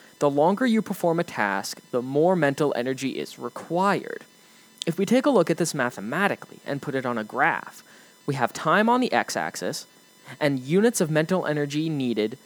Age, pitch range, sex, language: 20-39, 130-200 Hz, male, English